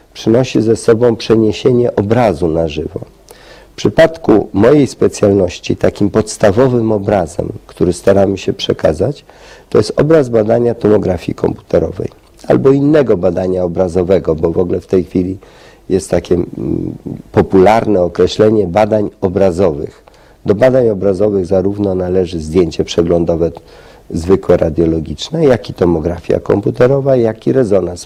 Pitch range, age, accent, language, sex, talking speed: 90-115 Hz, 50-69, native, Polish, male, 120 wpm